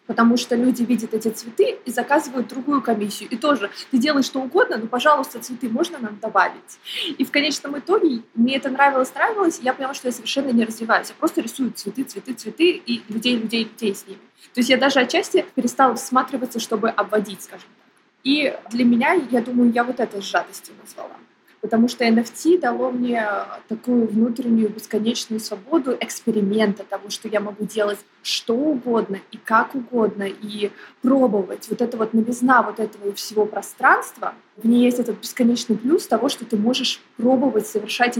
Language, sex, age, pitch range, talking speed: Russian, female, 20-39, 225-270 Hz, 175 wpm